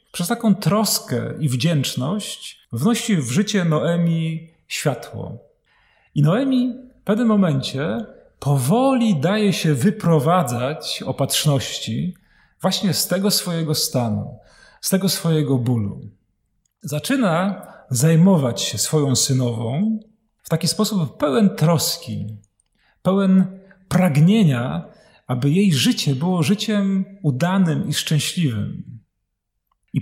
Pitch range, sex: 140-195 Hz, male